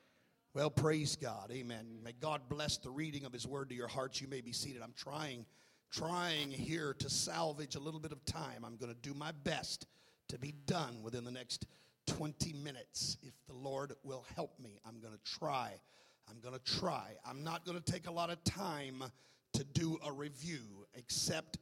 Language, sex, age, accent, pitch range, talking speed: English, male, 50-69, American, 130-155 Hz, 190 wpm